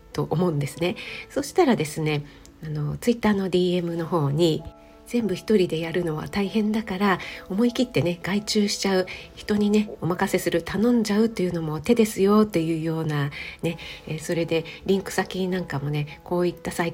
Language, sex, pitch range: Japanese, female, 155-205 Hz